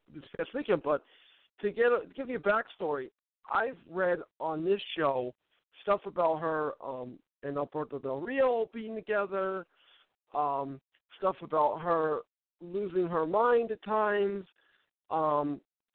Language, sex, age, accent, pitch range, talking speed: English, male, 50-69, American, 150-195 Hz, 140 wpm